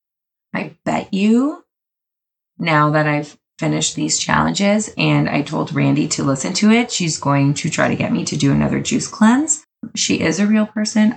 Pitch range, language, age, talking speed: 155-215 Hz, English, 20-39, 185 wpm